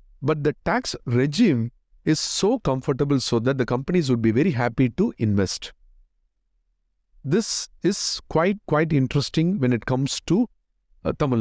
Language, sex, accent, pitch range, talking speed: English, male, Indian, 115-160 Hz, 145 wpm